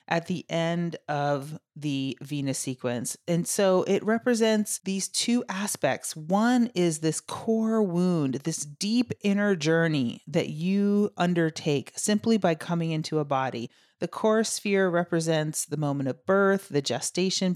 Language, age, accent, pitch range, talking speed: English, 30-49, American, 150-195 Hz, 145 wpm